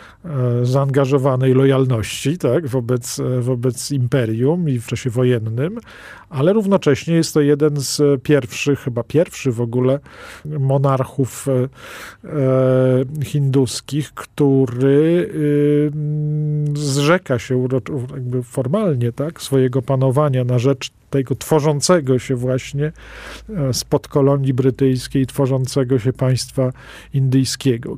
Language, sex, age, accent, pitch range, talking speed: Polish, male, 40-59, native, 125-145 Hz, 95 wpm